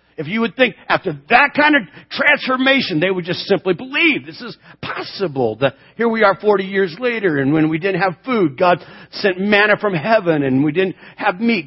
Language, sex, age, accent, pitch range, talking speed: English, male, 50-69, American, 175-235 Hz, 205 wpm